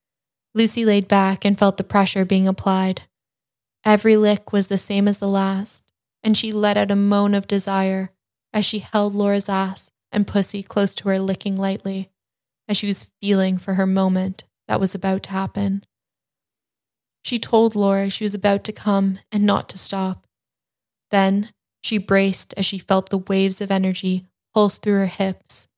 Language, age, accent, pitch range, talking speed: English, 10-29, American, 185-200 Hz, 175 wpm